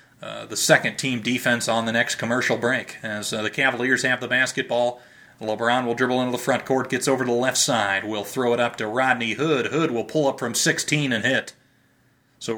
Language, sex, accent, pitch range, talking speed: English, male, American, 115-140 Hz, 220 wpm